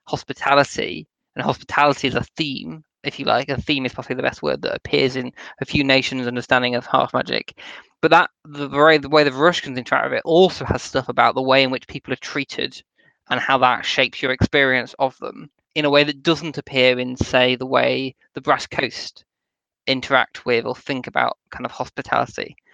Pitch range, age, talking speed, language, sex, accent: 130-150 Hz, 20-39, 205 wpm, English, male, British